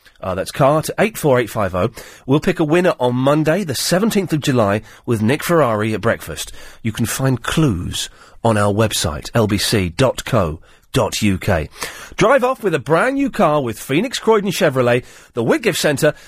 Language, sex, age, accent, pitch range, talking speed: English, male, 30-49, British, 110-175 Hz, 155 wpm